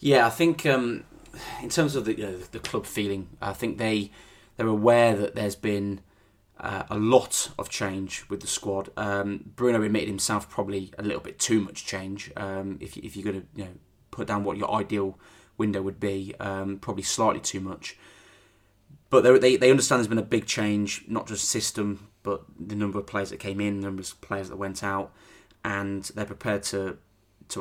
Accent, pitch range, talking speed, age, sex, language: British, 95-105 Hz, 205 wpm, 20-39, male, English